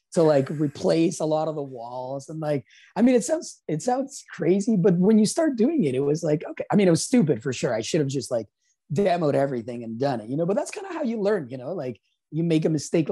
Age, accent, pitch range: 30-49, American, 130-195 Hz